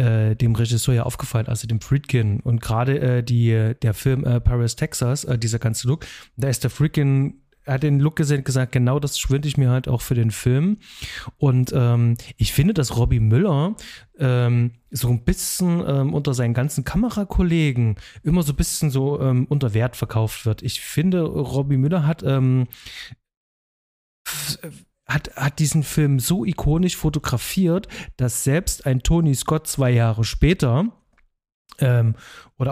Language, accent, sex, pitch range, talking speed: German, German, male, 120-145 Hz, 165 wpm